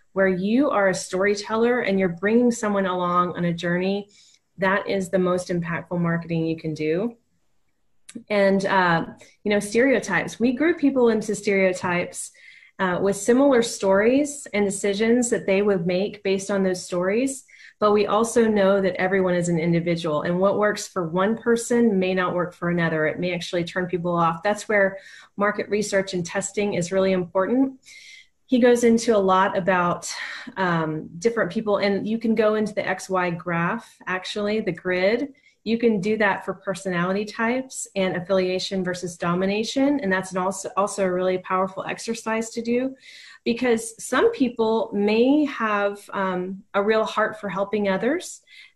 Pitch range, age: 185-225 Hz, 30-49